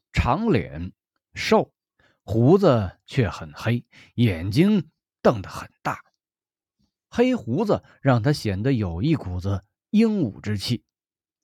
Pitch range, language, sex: 100-150 Hz, Chinese, male